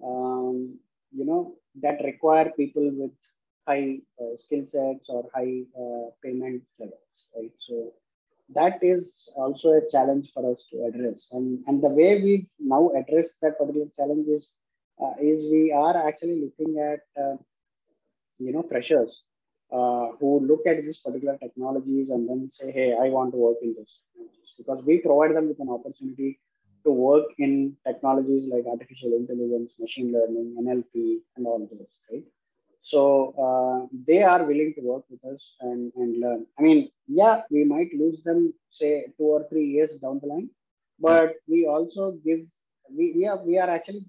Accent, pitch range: Indian, 125-160 Hz